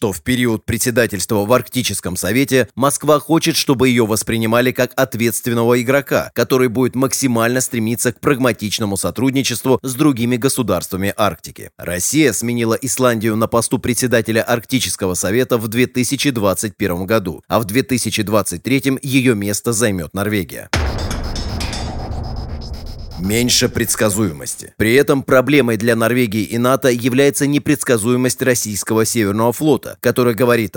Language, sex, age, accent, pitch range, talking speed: Russian, male, 30-49, native, 110-135 Hz, 120 wpm